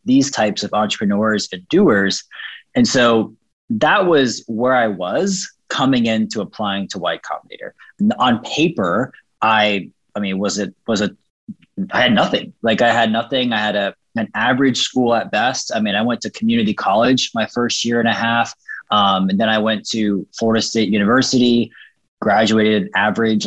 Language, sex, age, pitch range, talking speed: English, male, 20-39, 105-135 Hz, 170 wpm